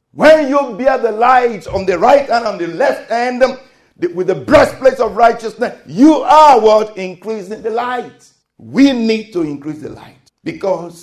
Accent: Nigerian